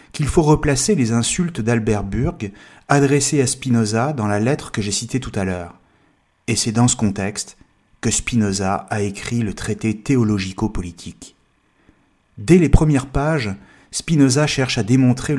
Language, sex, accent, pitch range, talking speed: French, male, French, 105-140 Hz, 150 wpm